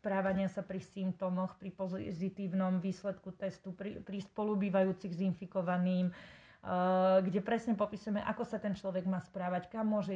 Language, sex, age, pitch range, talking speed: Slovak, female, 30-49, 185-205 Hz, 150 wpm